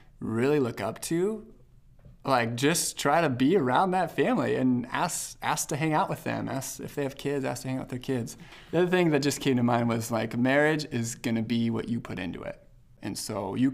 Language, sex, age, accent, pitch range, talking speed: English, male, 20-39, American, 115-135 Hz, 240 wpm